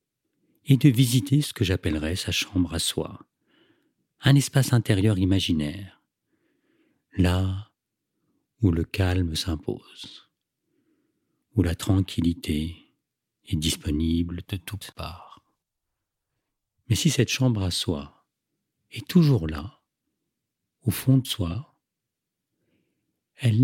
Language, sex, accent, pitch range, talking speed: French, male, French, 90-120 Hz, 105 wpm